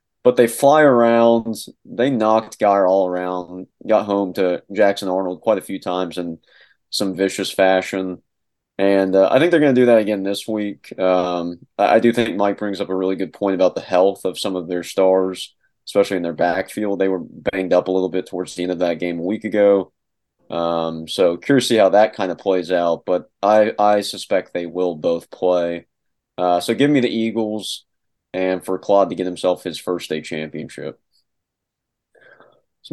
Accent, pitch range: American, 90-110 Hz